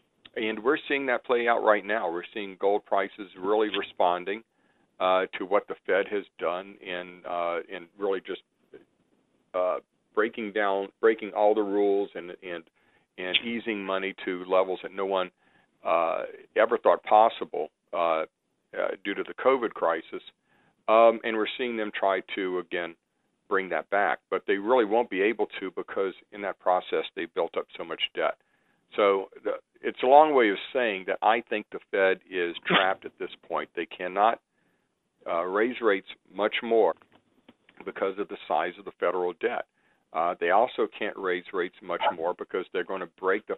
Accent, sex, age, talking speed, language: American, male, 50-69, 180 wpm, English